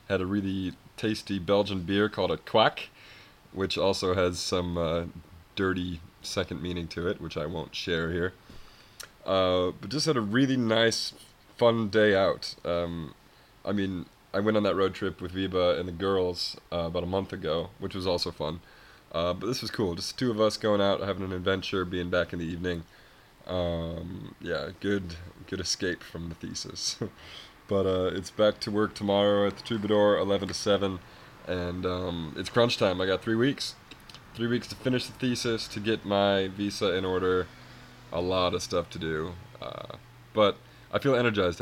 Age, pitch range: 20-39, 90-110 Hz